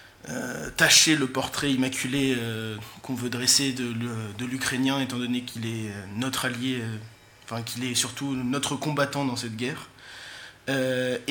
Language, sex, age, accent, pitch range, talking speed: French, male, 20-39, French, 120-135 Hz, 155 wpm